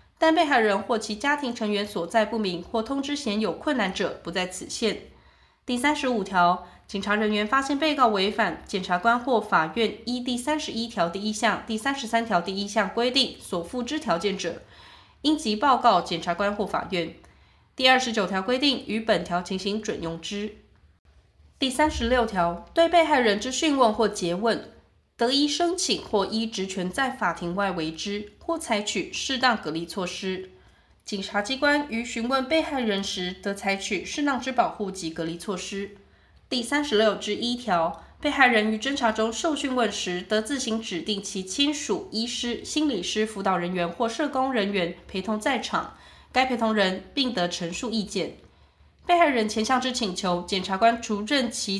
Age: 20-39